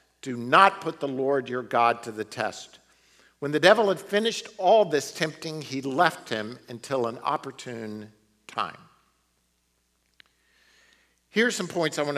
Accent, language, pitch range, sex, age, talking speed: American, English, 130-175 Hz, male, 50-69, 150 wpm